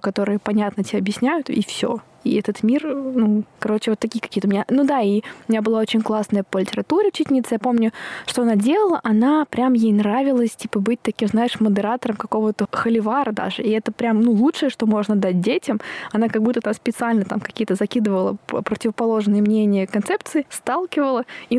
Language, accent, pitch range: Russian, native, 205-235 Hz